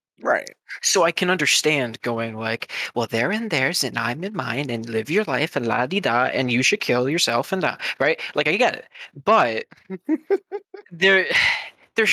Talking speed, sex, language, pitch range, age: 190 wpm, male, English, 125-165 Hz, 20-39